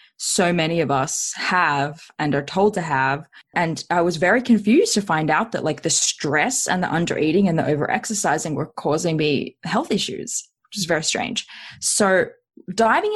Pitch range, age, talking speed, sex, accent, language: 150-230 Hz, 20-39, 180 wpm, female, Australian, English